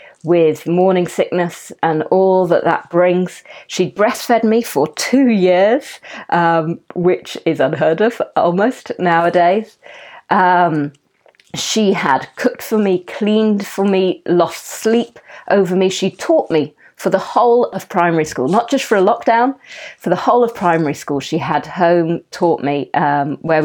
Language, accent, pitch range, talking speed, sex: English, British, 160-210 Hz, 155 wpm, female